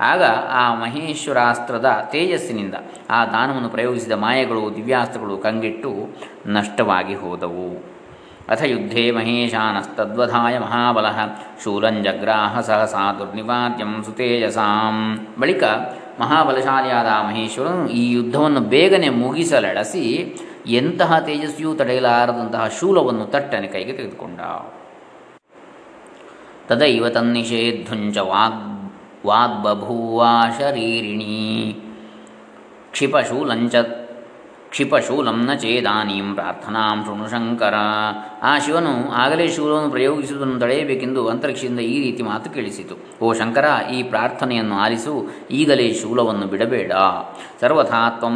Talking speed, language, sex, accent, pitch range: 80 wpm, Kannada, male, native, 105-125 Hz